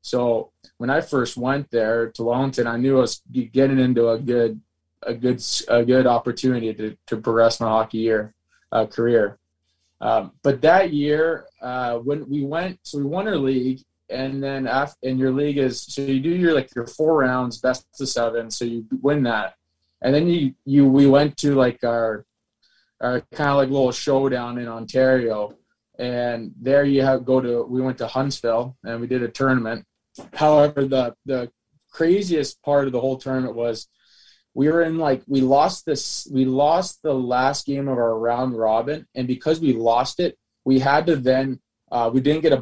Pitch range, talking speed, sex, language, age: 115-140 Hz, 190 wpm, male, English, 20-39